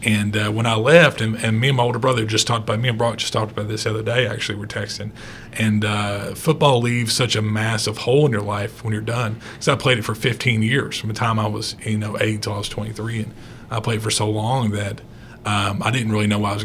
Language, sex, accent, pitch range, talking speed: English, male, American, 110-115 Hz, 280 wpm